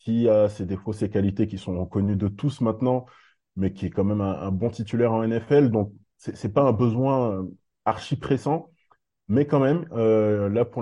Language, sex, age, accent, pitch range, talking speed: French, male, 20-39, French, 105-125 Hz, 205 wpm